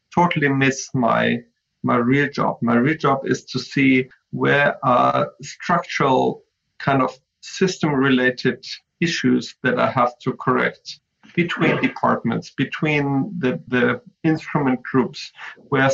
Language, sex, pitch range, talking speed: English, male, 130-155 Hz, 130 wpm